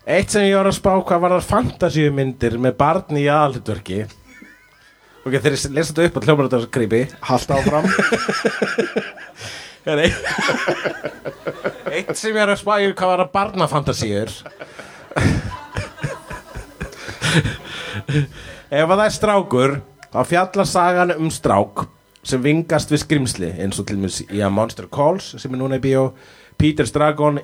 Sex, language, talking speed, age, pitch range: male, English, 140 wpm, 30-49, 115-155 Hz